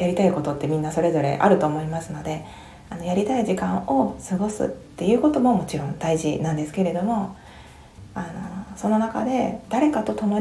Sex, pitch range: female, 165-220 Hz